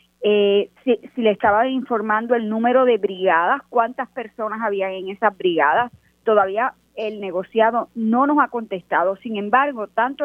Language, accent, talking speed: Spanish, American, 150 wpm